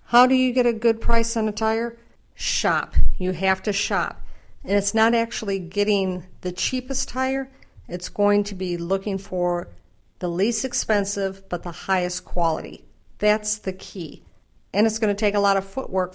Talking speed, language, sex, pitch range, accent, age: 180 wpm, English, female, 170-215 Hz, American, 50-69